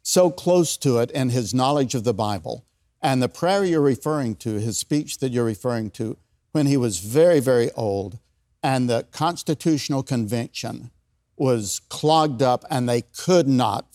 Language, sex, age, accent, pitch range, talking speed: English, male, 60-79, American, 120-145 Hz, 170 wpm